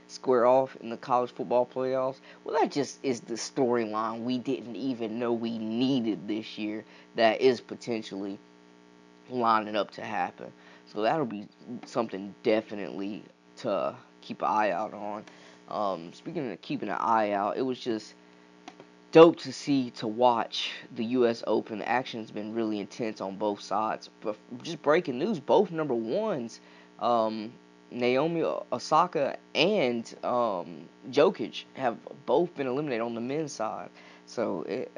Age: 20-39